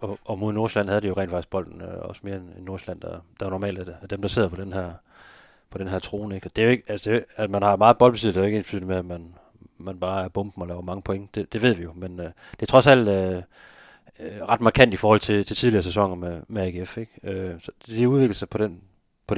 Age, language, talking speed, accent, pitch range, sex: 30-49, Danish, 275 wpm, native, 95-105 Hz, male